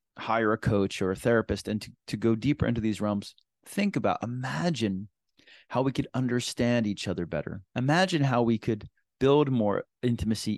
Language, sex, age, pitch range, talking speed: English, male, 30-49, 105-130 Hz, 175 wpm